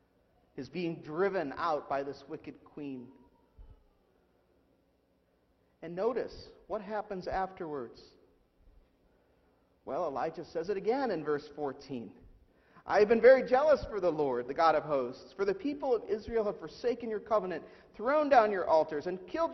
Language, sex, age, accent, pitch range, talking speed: English, male, 50-69, American, 170-245 Hz, 145 wpm